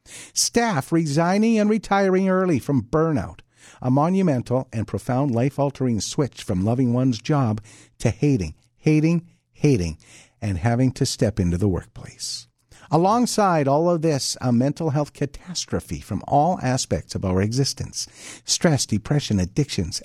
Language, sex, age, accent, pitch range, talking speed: English, male, 50-69, American, 105-155 Hz, 140 wpm